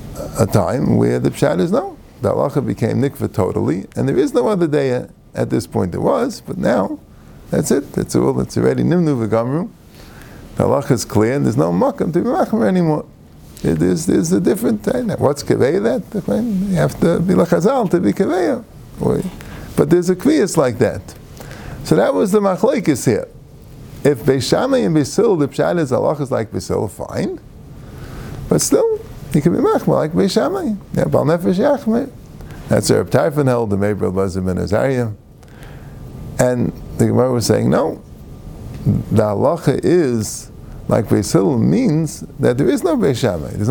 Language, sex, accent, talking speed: English, male, American, 170 wpm